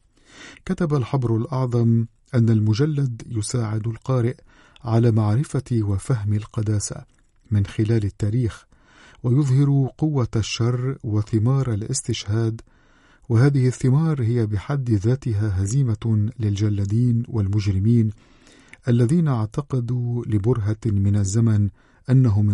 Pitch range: 105-125 Hz